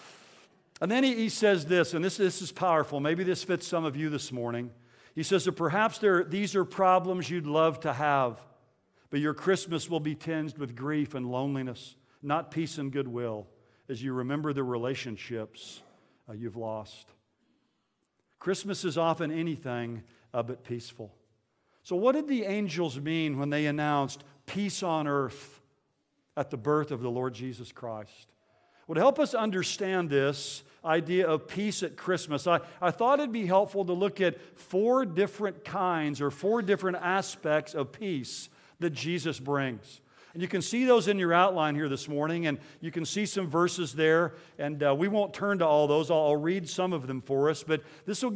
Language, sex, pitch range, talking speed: English, male, 140-185 Hz, 180 wpm